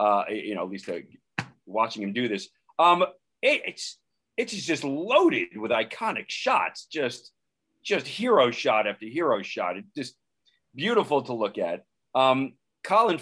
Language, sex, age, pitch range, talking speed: English, male, 40-59, 110-170 Hz, 150 wpm